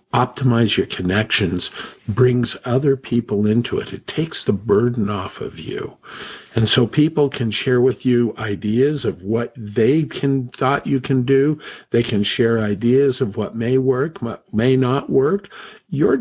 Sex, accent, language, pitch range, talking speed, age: male, American, English, 110-140 Hz, 165 wpm, 50-69